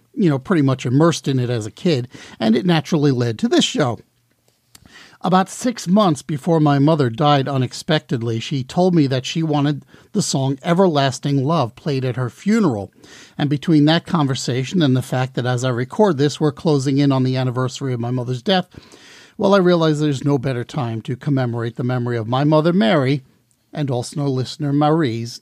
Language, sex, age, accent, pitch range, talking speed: English, male, 50-69, American, 135-180 Hz, 190 wpm